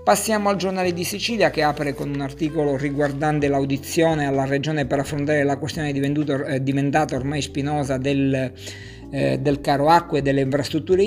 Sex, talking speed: male, 165 wpm